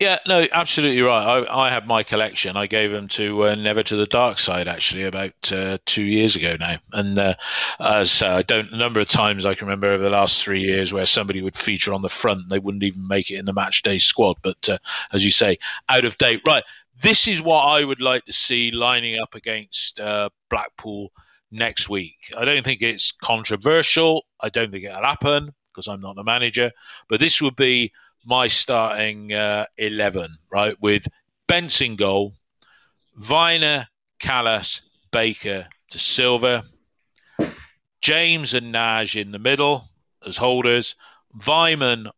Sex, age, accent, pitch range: male, 40-59, British, 100-125 Hz